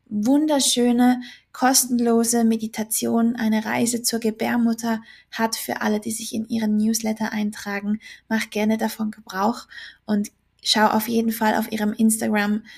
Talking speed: 130 wpm